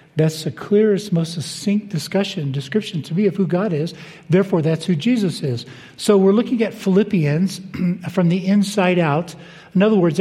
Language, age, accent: English, 50-69, American